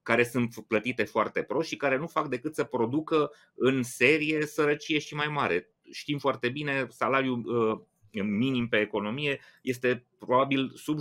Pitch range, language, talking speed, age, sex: 110-150 Hz, Romanian, 155 wpm, 30-49, male